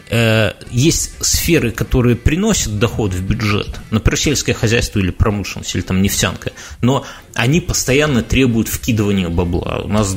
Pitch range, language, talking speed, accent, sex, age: 105-130 Hz, Russian, 135 wpm, native, male, 20-39